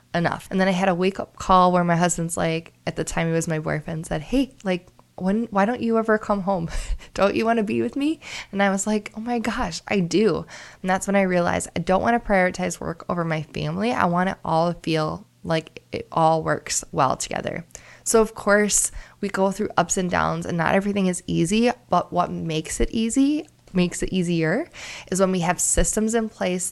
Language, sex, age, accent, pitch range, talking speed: English, female, 20-39, American, 165-200 Hz, 225 wpm